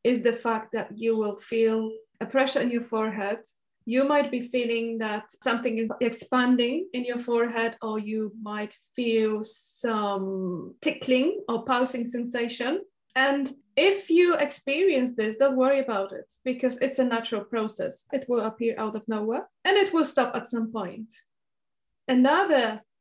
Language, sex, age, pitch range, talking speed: English, female, 20-39, 220-255 Hz, 155 wpm